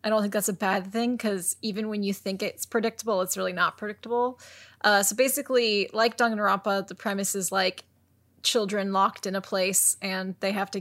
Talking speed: 200 wpm